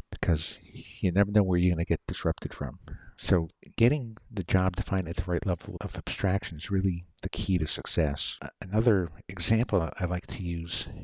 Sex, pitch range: male, 85-100 Hz